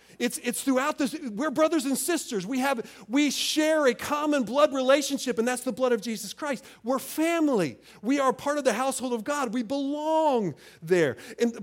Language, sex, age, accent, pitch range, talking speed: English, male, 40-59, American, 170-270 Hz, 195 wpm